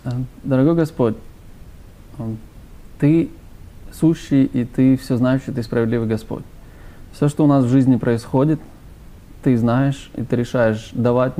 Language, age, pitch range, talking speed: Russian, 20-39, 115-135 Hz, 125 wpm